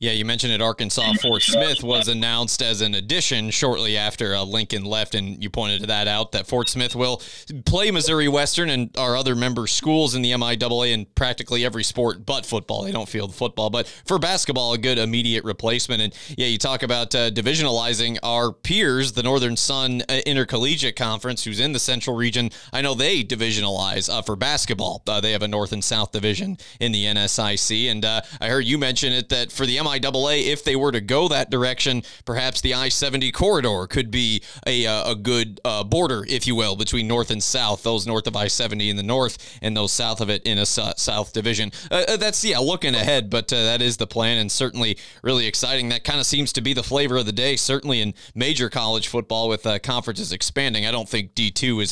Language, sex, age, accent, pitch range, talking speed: English, male, 30-49, American, 110-130 Hz, 215 wpm